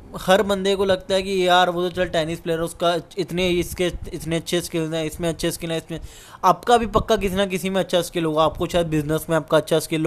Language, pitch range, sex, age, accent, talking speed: Hindi, 160-195 Hz, male, 10-29, native, 250 wpm